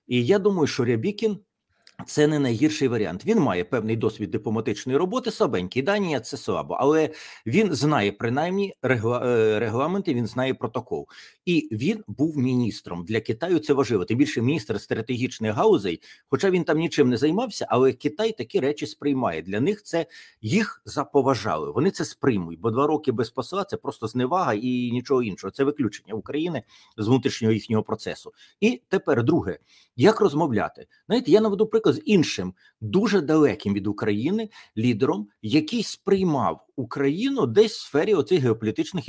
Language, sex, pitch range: Ukrainian, male, 115-170 Hz